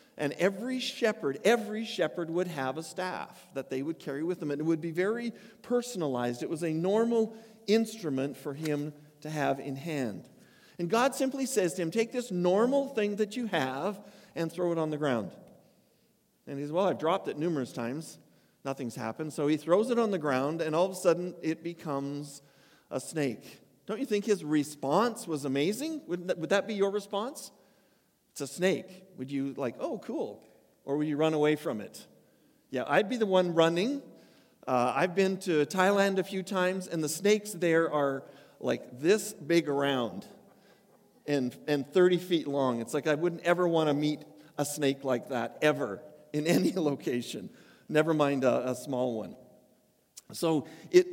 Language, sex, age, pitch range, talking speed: English, male, 50-69, 145-200 Hz, 185 wpm